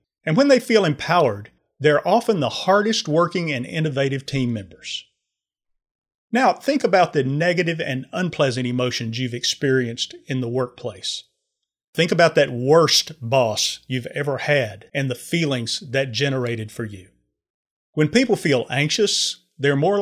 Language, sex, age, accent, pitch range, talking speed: English, male, 40-59, American, 130-175 Hz, 140 wpm